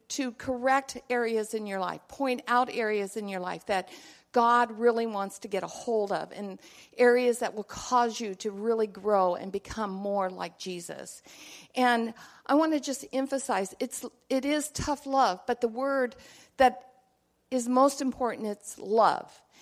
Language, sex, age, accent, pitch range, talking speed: English, female, 50-69, American, 210-270 Hz, 170 wpm